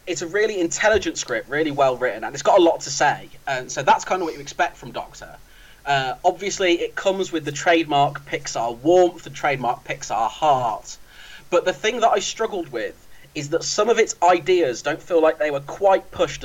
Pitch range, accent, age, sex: 140-175 Hz, British, 30-49, male